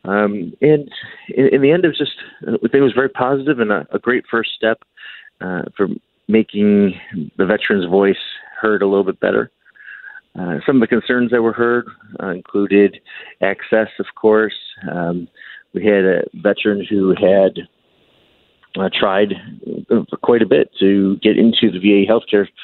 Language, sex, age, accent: English, male, 40-59, American